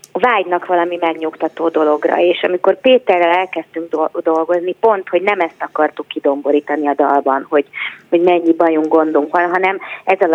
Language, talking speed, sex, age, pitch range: Hungarian, 145 wpm, female, 30-49, 155-180 Hz